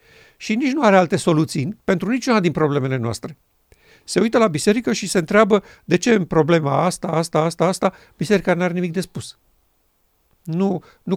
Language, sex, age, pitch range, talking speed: Romanian, male, 50-69, 155-195 Hz, 185 wpm